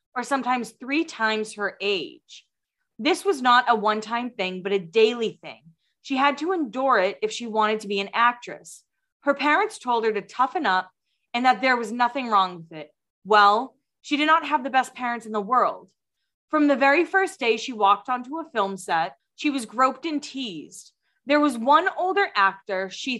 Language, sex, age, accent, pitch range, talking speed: English, female, 20-39, American, 210-280 Hz, 195 wpm